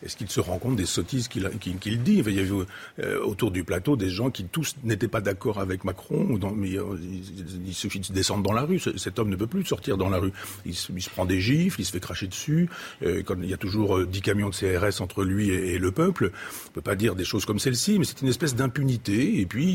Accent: French